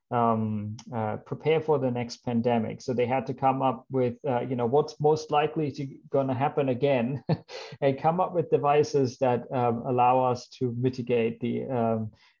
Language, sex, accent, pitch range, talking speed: English, male, German, 115-145 Hz, 185 wpm